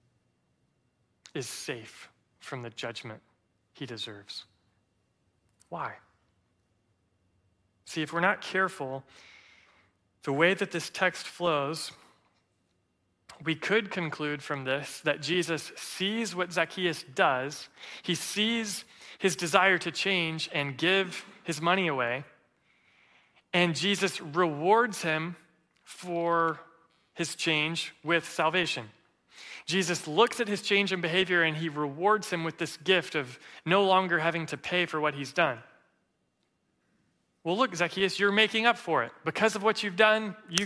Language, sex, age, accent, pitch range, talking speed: English, male, 30-49, American, 150-195 Hz, 130 wpm